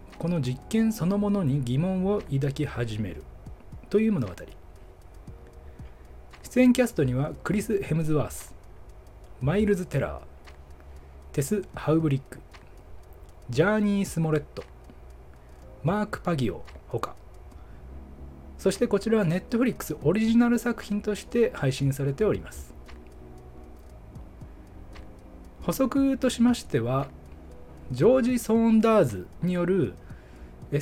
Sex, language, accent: male, Japanese, native